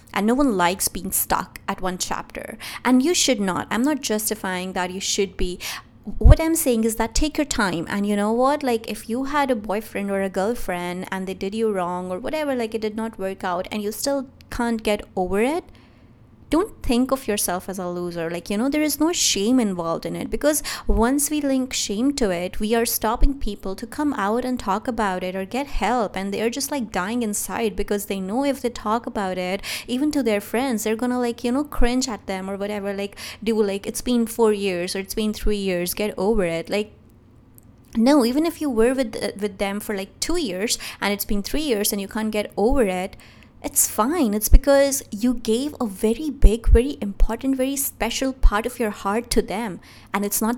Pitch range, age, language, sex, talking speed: 195-245 Hz, 20-39, English, female, 225 wpm